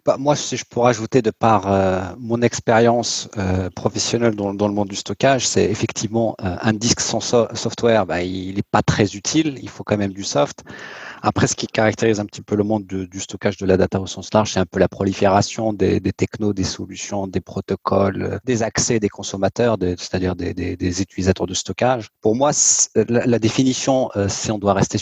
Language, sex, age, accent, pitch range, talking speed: French, male, 40-59, French, 95-115 Hz, 220 wpm